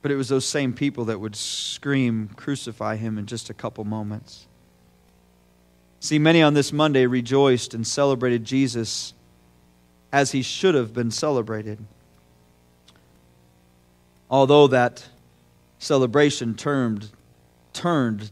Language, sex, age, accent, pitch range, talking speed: English, male, 40-59, American, 110-150 Hz, 120 wpm